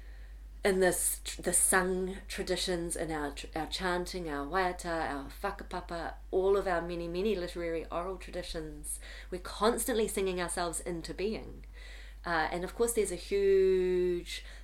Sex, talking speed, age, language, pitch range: female, 140 wpm, 30-49, English, 150-190 Hz